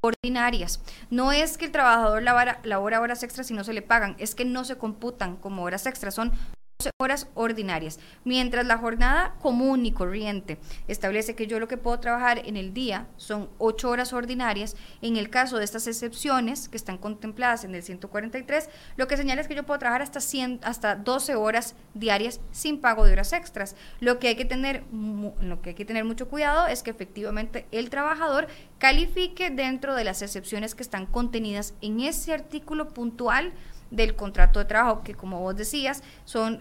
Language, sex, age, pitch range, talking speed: Spanish, female, 20-39, 210-250 Hz, 185 wpm